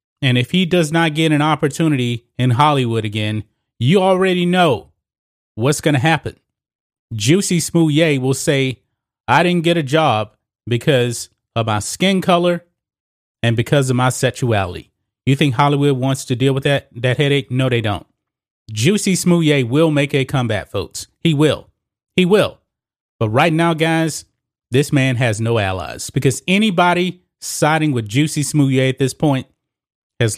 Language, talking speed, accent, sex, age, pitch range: English, 160 wpm, American, male, 30-49, 120-150 Hz